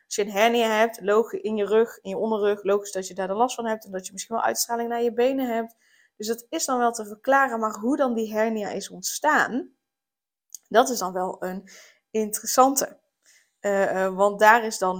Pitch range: 200-230 Hz